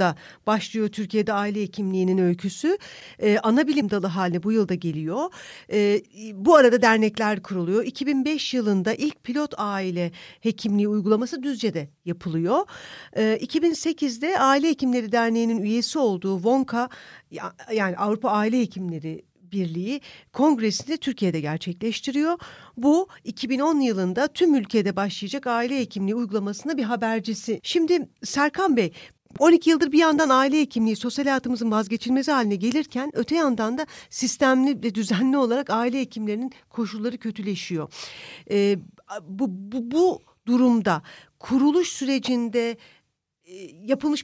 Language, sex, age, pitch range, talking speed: Turkish, female, 50-69, 205-275 Hz, 120 wpm